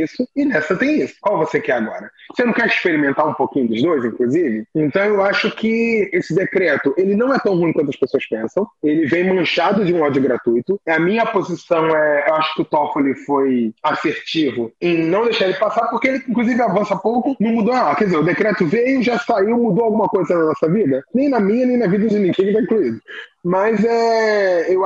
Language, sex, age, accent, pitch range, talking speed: Portuguese, male, 20-39, Brazilian, 170-230 Hz, 220 wpm